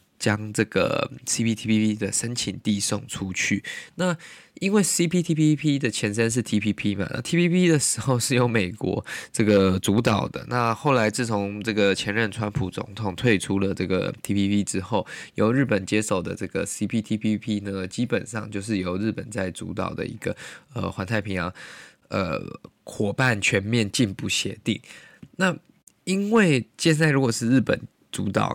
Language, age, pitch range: Chinese, 20-39, 105-130 Hz